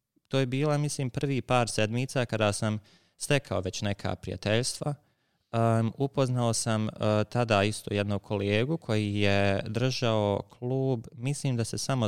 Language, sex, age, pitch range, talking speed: English, male, 20-39, 105-125 Hz, 145 wpm